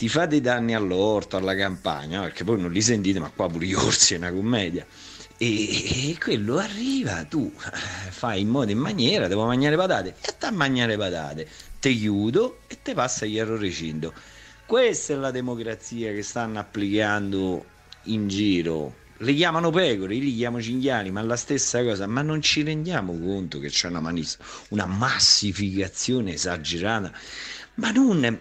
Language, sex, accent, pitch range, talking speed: Italian, male, native, 95-135 Hz, 160 wpm